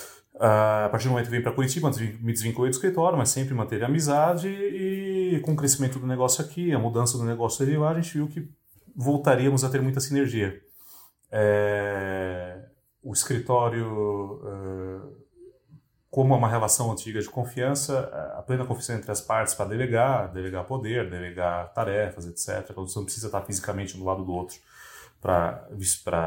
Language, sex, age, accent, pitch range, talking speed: Portuguese, male, 30-49, Brazilian, 100-135 Hz, 170 wpm